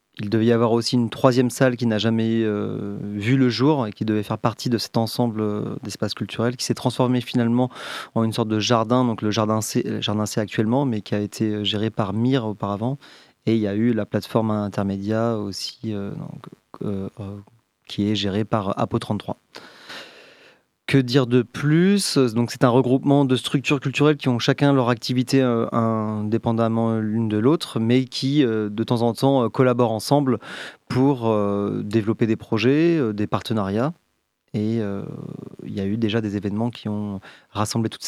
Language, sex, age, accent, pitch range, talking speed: French, male, 30-49, French, 105-125 Hz, 175 wpm